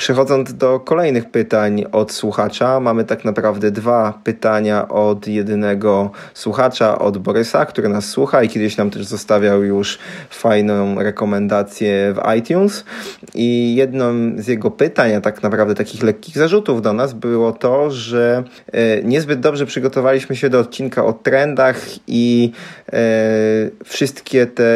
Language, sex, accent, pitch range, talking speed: Polish, male, native, 110-130 Hz, 135 wpm